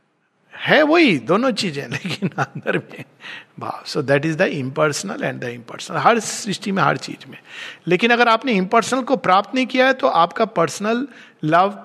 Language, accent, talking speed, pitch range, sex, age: Hindi, native, 170 wpm, 170-230 Hz, male, 50-69